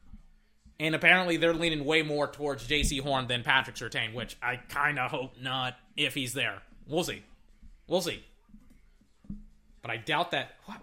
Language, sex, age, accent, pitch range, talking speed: English, male, 20-39, American, 155-205 Hz, 165 wpm